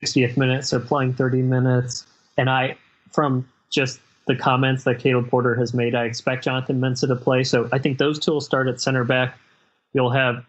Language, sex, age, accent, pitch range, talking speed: English, male, 20-39, American, 120-135 Hz, 200 wpm